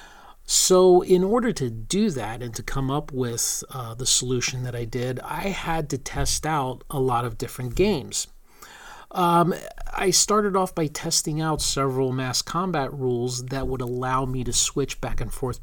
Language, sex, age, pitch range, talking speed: English, male, 40-59, 120-160 Hz, 180 wpm